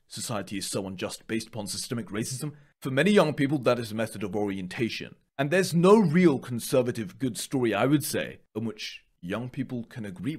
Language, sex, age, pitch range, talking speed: Italian, male, 30-49, 105-135 Hz, 195 wpm